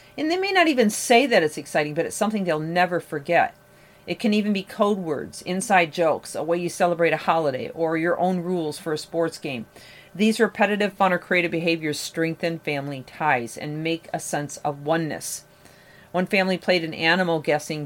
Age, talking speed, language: 40-59, 190 wpm, English